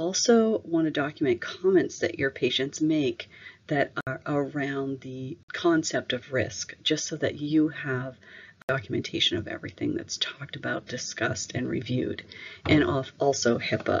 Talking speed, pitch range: 140 wpm, 135-165 Hz